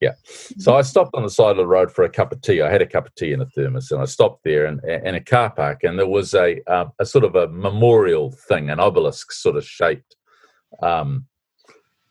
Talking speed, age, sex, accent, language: 250 wpm, 40-59, male, Australian, English